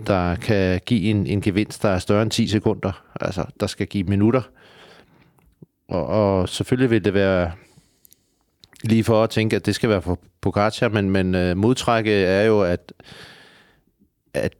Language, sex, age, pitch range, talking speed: Danish, male, 40-59, 95-115 Hz, 165 wpm